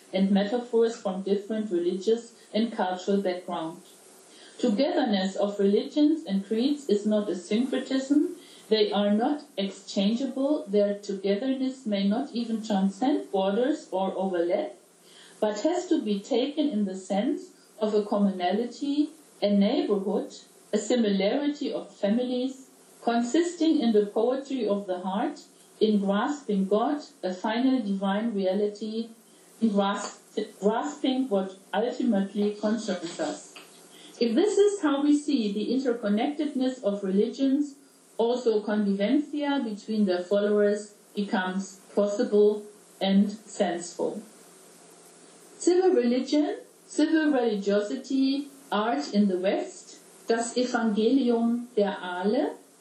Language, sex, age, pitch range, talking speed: English, female, 50-69, 200-265 Hz, 110 wpm